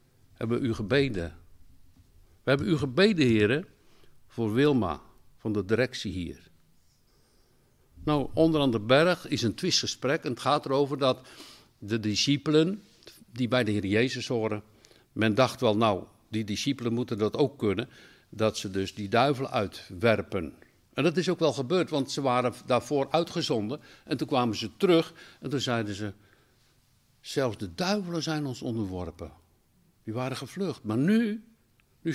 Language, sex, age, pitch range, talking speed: Dutch, male, 60-79, 110-145 Hz, 155 wpm